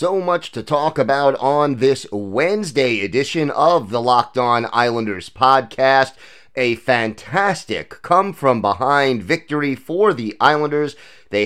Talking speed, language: 120 wpm, English